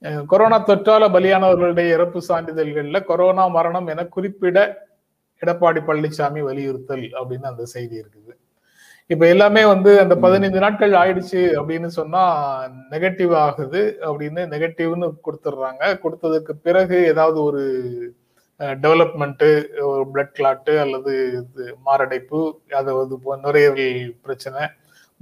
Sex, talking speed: male, 100 wpm